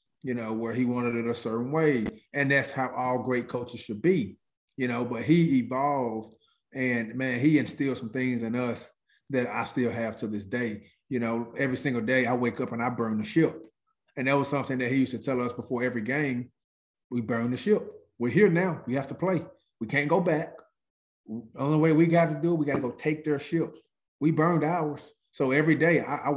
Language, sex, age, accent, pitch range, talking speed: English, male, 30-49, American, 120-140 Hz, 225 wpm